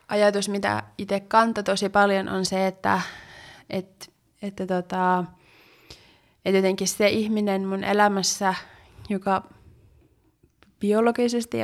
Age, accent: 20-39, native